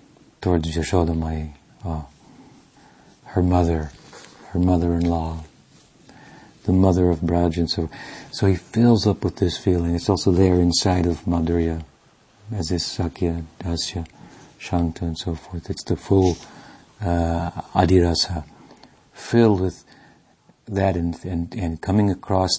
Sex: male